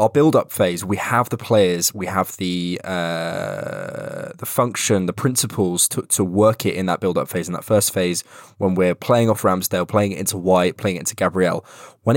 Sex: male